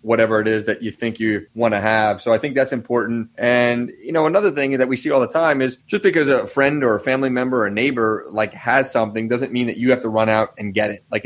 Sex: male